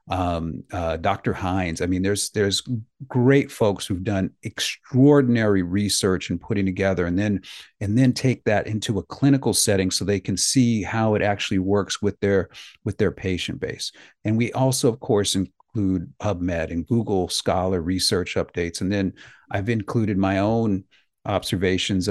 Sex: male